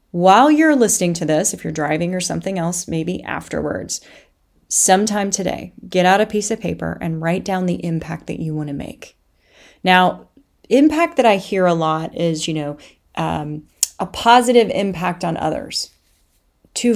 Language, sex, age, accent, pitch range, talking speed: English, female, 30-49, American, 165-195 Hz, 165 wpm